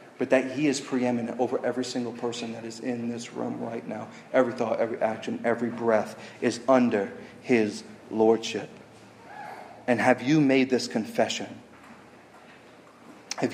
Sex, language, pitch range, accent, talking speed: male, English, 120-140 Hz, American, 145 wpm